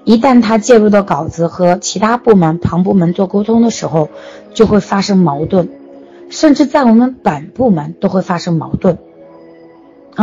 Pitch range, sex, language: 170-225 Hz, female, Chinese